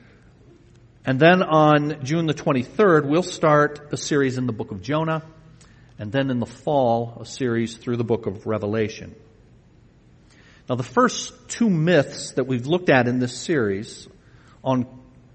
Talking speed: 155 wpm